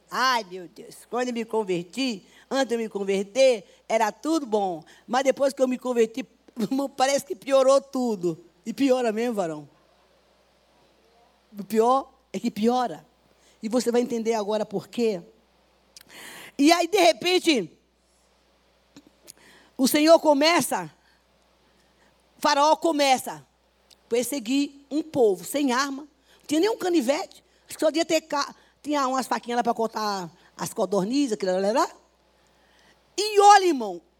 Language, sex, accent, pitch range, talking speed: Portuguese, female, Brazilian, 220-315 Hz, 135 wpm